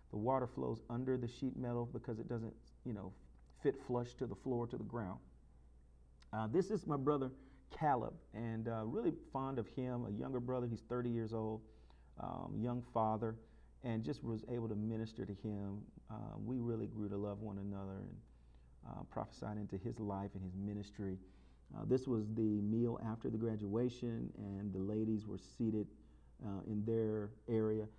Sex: male